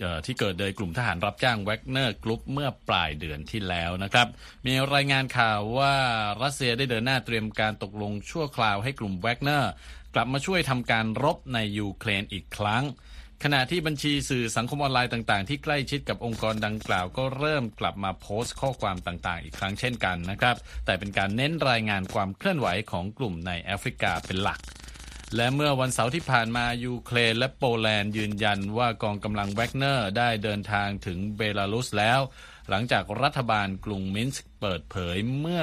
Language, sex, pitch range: Thai, male, 100-130 Hz